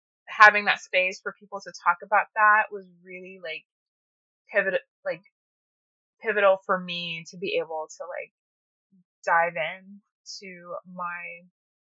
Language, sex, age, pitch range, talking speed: English, female, 20-39, 180-220 Hz, 125 wpm